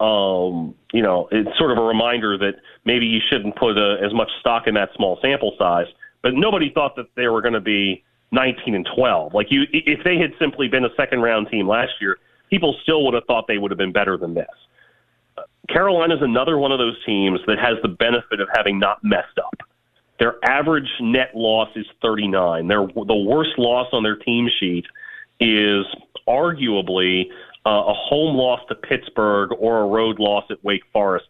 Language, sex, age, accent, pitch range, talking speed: English, male, 40-59, American, 100-130 Hz, 200 wpm